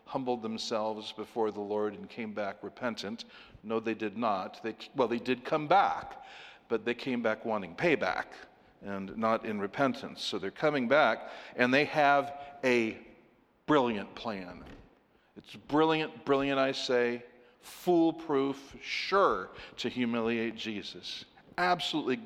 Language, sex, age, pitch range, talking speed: English, male, 50-69, 115-155 Hz, 130 wpm